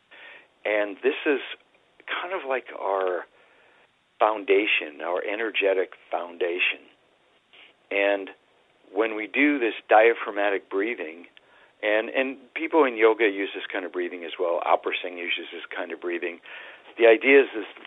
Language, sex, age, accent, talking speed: English, male, 50-69, American, 140 wpm